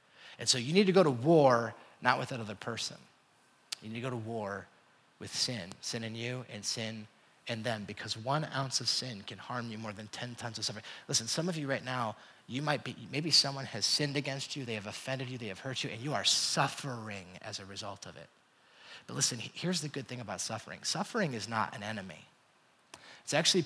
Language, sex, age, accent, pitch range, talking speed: English, male, 30-49, American, 110-135 Hz, 225 wpm